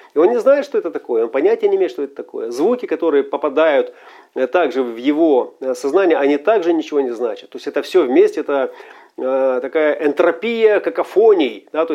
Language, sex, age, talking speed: Russian, male, 40-59, 185 wpm